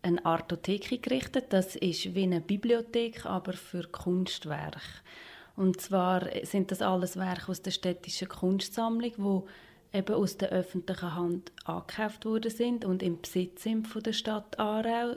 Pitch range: 180-210 Hz